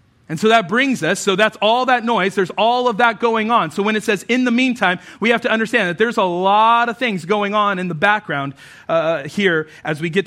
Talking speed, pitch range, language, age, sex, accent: 250 wpm, 180-250 Hz, English, 40-59, male, American